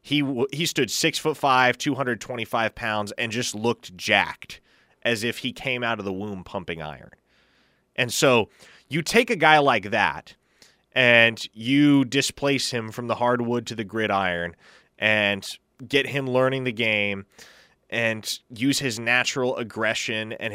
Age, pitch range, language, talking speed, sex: 20-39, 115-140 Hz, English, 160 wpm, male